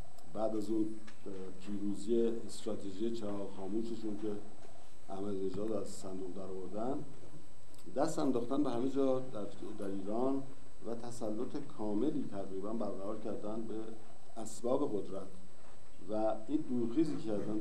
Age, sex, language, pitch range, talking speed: 50-69, male, Persian, 100-120 Hz, 115 wpm